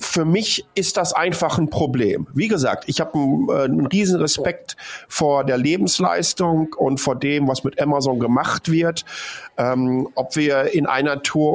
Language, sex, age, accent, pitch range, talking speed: German, male, 50-69, German, 130-165 Hz, 165 wpm